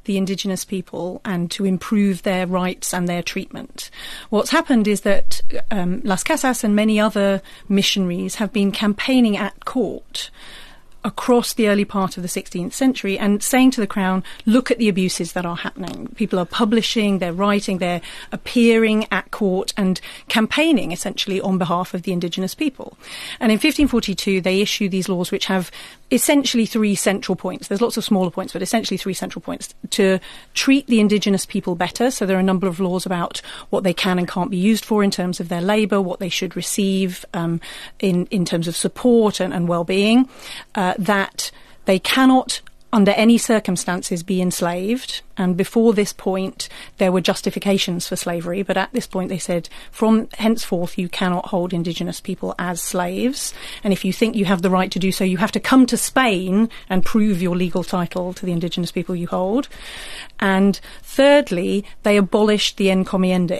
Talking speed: 185 wpm